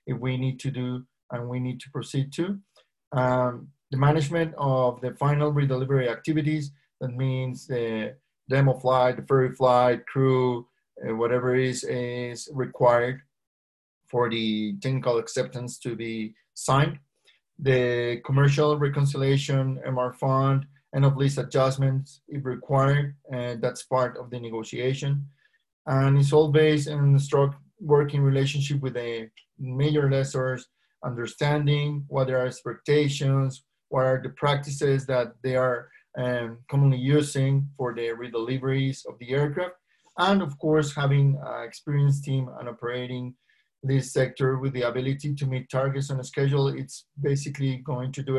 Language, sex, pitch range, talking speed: English, male, 125-140 Hz, 145 wpm